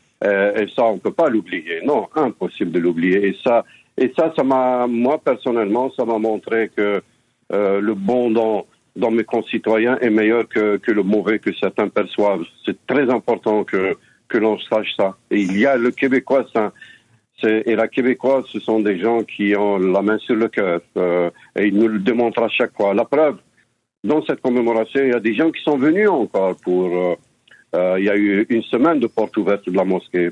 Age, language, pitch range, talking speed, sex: 60-79, French, 100-125 Hz, 210 wpm, male